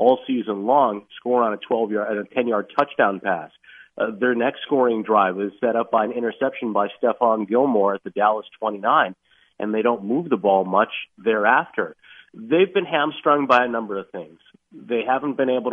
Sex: male